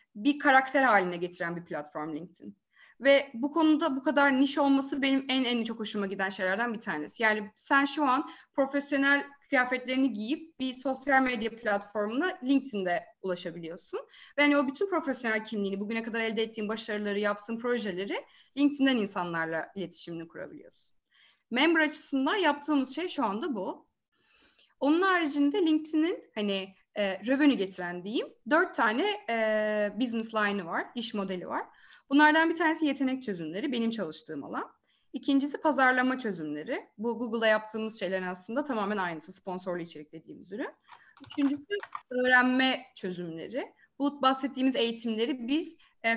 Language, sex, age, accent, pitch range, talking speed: Turkish, female, 30-49, native, 205-285 Hz, 140 wpm